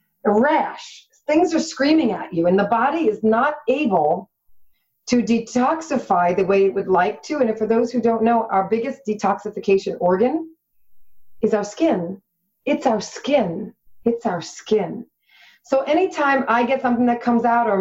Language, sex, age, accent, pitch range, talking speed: English, female, 40-59, American, 195-270 Hz, 170 wpm